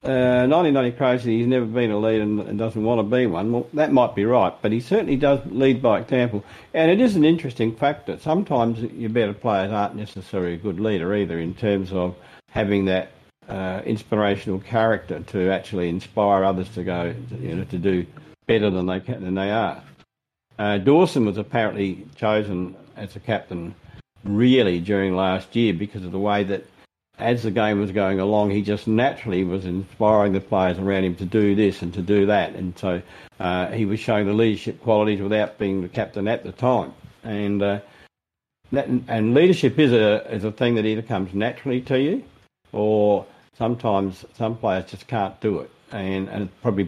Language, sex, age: English, male, 50-69